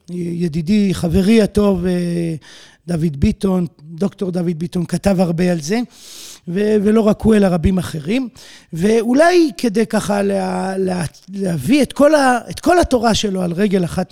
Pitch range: 175-230 Hz